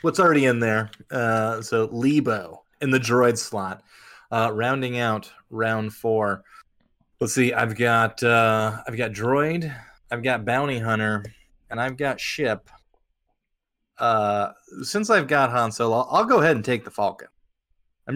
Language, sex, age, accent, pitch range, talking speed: English, male, 20-39, American, 105-130 Hz, 155 wpm